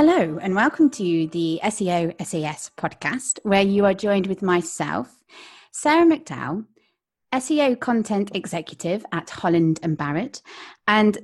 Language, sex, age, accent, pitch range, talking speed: English, female, 30-49, British, 170-255 Hz, 125 wpm